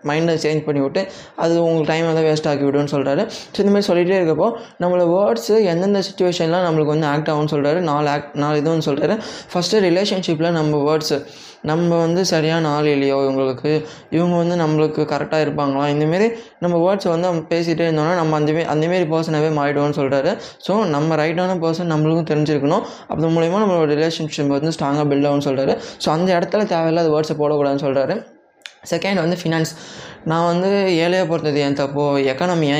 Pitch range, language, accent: 145-175 Hz, Tamil, native